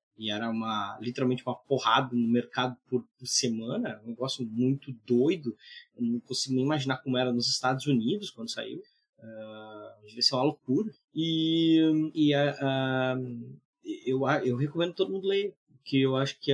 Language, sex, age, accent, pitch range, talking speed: Portuguese, male, 20-39, Brazilian, 120-145 Hz, 170 wpm